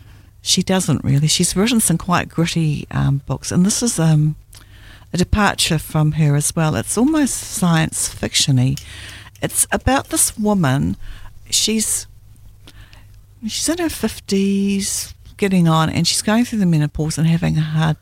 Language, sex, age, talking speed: English, female, 60-79, 150 wpm